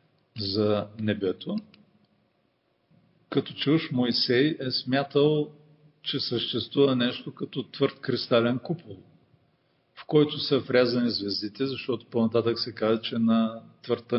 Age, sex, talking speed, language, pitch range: 40-59, male, 110 wpm, Bulgarian, 115-155 Hz